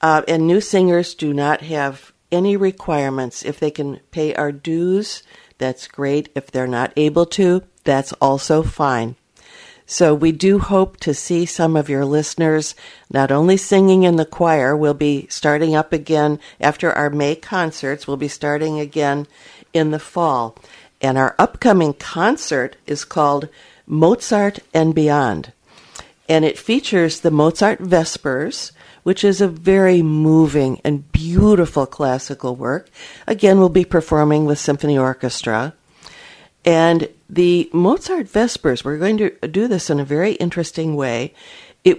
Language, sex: English, female